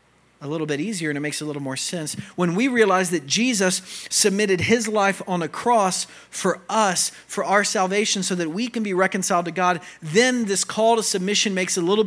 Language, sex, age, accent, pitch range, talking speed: English, male, 40-59, American, 140-200 Hz, 215 wpm